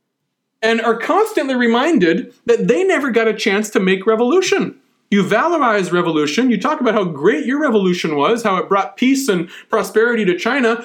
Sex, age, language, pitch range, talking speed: male, 40-59, English, 180-235 Hz, 175 wpm